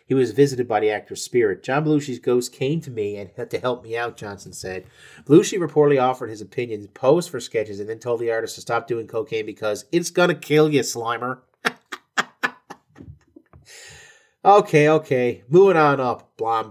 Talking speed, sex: 185 wpm, male